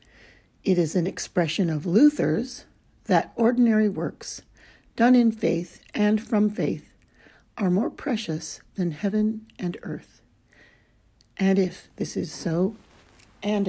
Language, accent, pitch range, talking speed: English, American, 165-215 Hz, 125 wpm